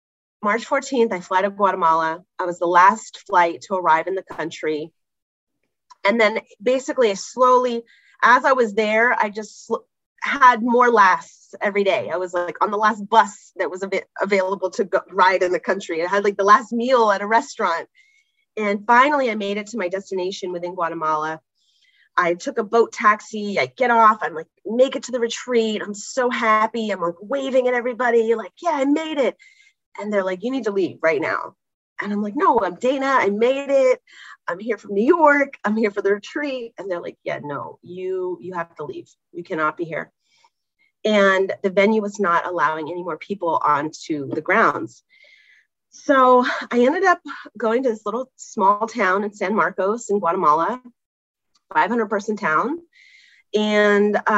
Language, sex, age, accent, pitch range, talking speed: English, female, 30-49, American, 185-250 Hz, 185 wpm